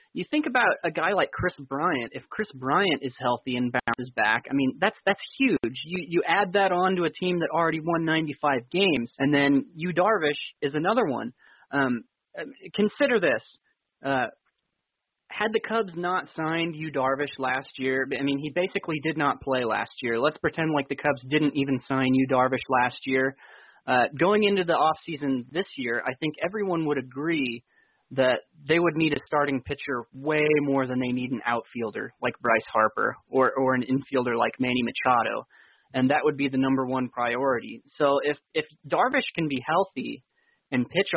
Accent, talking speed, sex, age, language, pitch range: American, 185 wpm, male, 20-39, English, 130-170 Hz